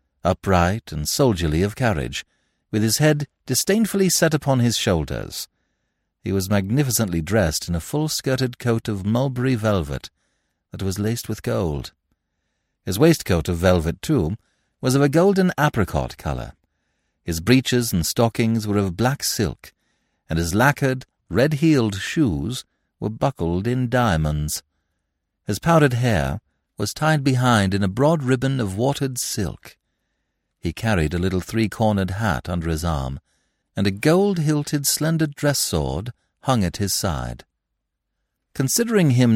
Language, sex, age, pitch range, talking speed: English, male, 60-79, 85-135 Hz, 140 wpm